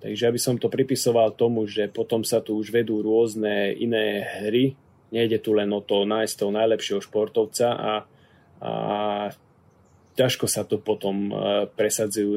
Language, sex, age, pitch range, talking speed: Slovak, male, 20-39, 105-120 Hz, 155 wpm